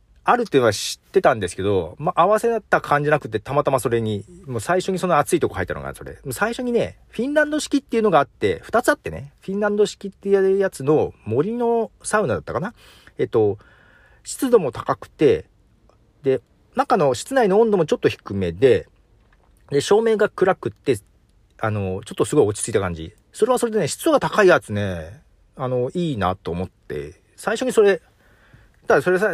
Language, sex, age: Japanese, male, 40-59